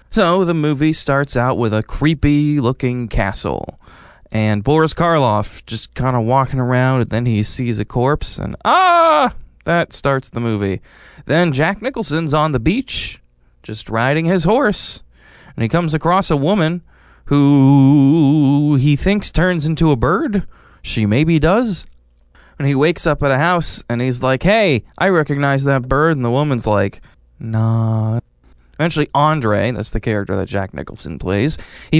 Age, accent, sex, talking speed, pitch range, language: 20-39, American, male, 160 wpm, 115-165 Hz, English